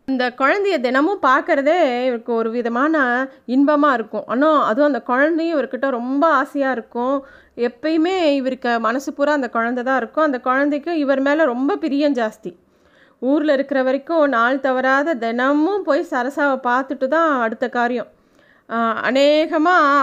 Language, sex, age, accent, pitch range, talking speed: Tamil, female, 30-49, native, 245-305 Hz, 135 wpm